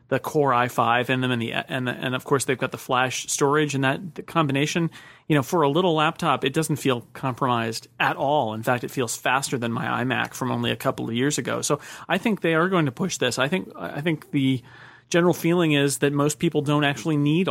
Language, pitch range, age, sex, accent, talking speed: English, 125-150 Hz, 30-49, male, American, 245 wpm